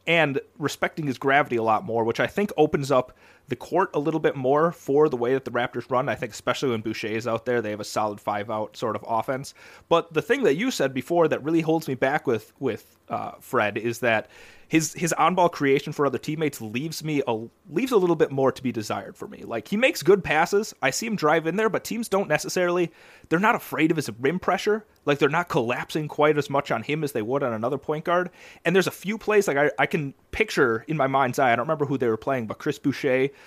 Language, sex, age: English, male, 30-49